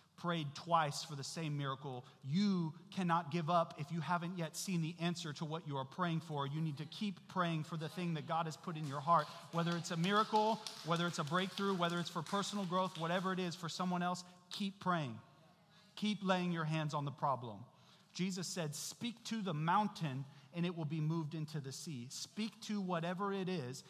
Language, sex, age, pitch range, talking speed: English, male, 40-59, 150-180 Hz, 215 wpm